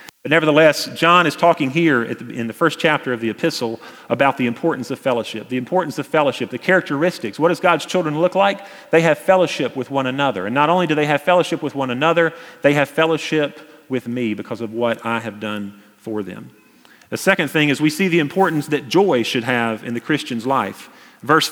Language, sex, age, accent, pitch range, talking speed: English, male, 40-59, American, 130-165 Hz, 210 wpm